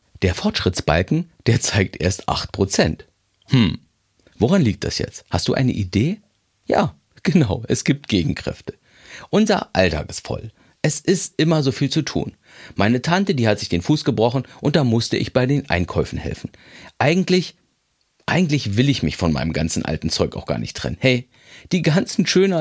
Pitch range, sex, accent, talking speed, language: 105-165 Hz, male, German, 175 wpm, German